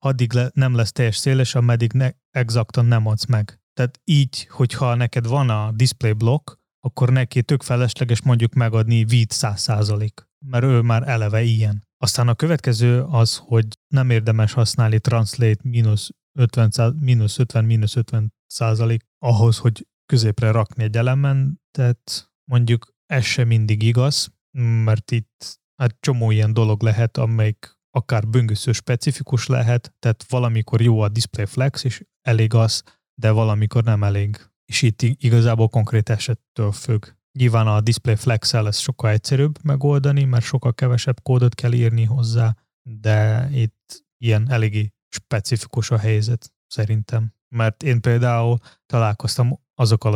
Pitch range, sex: 110-125 Hz, male